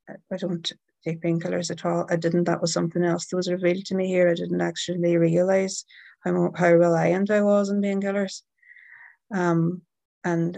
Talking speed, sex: 175 wpm, female